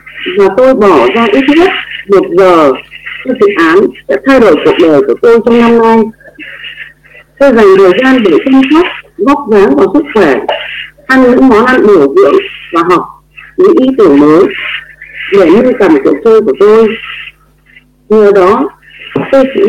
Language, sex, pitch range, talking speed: Vietnamese, female, 230-375 Hz, 170 wpm